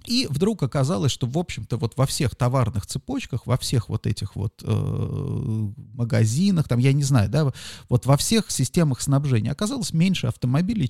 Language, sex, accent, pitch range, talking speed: Russian, male, native, 120-160 Hz, 170 wpm